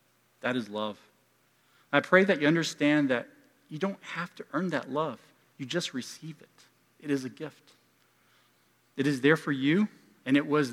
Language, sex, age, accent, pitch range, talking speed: English, male, 40-59, American, 120-155 Hz, 180 wpm